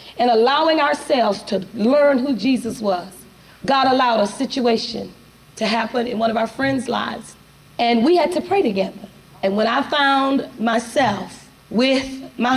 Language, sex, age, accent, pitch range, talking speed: English, female, 30-49, American, 215-290 Hz, 160 wpm